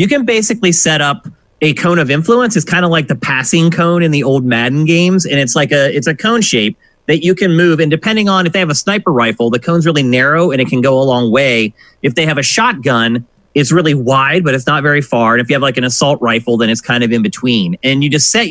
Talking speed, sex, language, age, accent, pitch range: 270 wpm, male, English, 30-49, American, 125-170 Hz